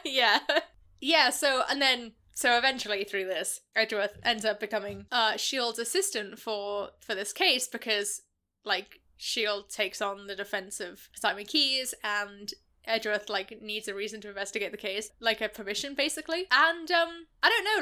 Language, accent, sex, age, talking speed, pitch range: English, British, female, 10-29, 165 wpm, 215-285 Hz